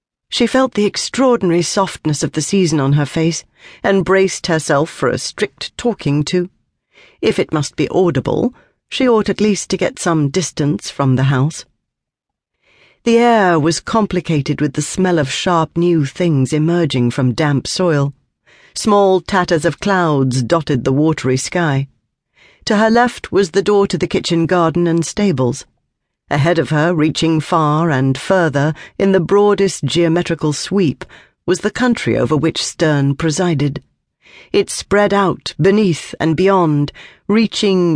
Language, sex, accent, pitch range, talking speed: English, female, British, 150-195 Hz, 150 wpm